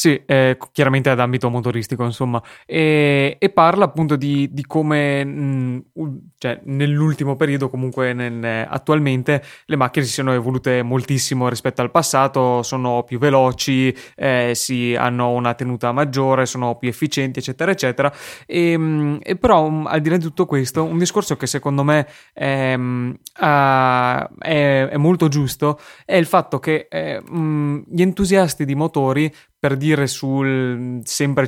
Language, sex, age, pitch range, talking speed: Italian, male, 20-39, 130-150 Hz, 135 wpm